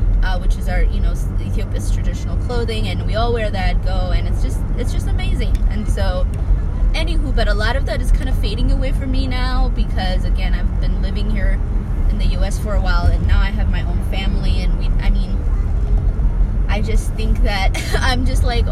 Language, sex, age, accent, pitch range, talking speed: English, female, 20-39, American, 80-95 Hz, 215 wpm